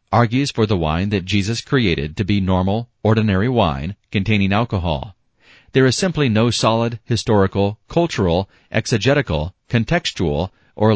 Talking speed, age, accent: 130 wpm, 40-59, American